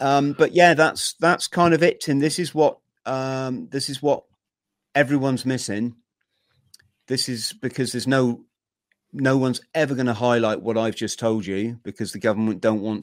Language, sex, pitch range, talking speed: English, male, 110-130 Hz, 180 wpm